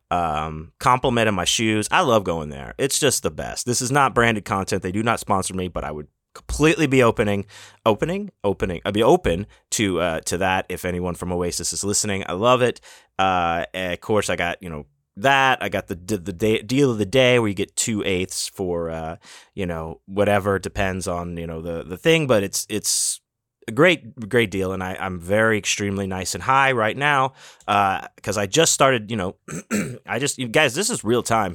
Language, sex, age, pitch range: English, male, 30-49, 90-130 Hz